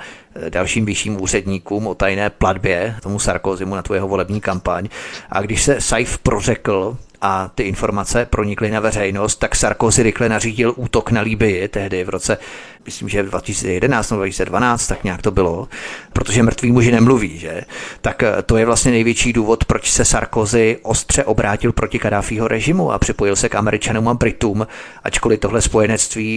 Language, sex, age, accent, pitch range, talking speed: Czech, male, 30-49, native, 100-115 Hz, 160 wpm